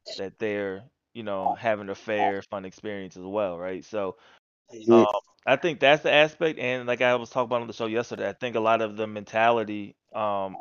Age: 20-39